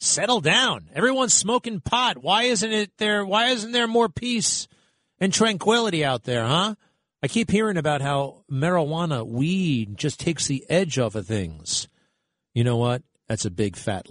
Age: 40-59